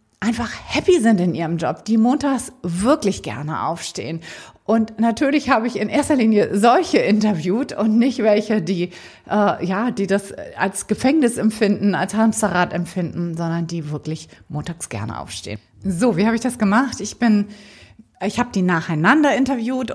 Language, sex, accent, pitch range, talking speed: German, female, German, 175-235 Hz, 160 wpm